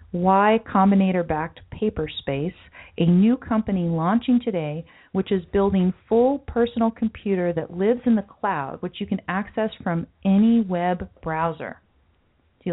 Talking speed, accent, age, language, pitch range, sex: 145 wpm, American, 40-59, English, 170-220 Hz, female